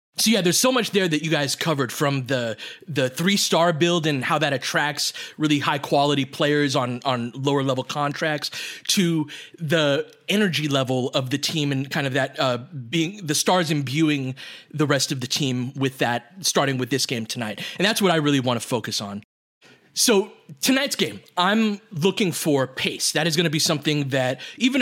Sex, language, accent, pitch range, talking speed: male, English, American, 135-175 Hz, 195 wpm